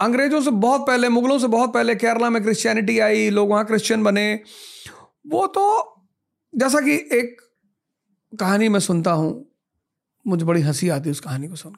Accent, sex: native, male